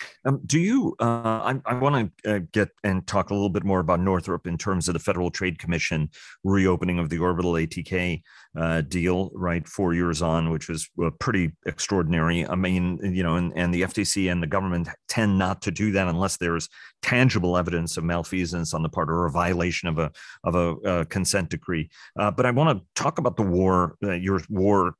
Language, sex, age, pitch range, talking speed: English, male, 40-59, 85-100 Hz, 205 wpm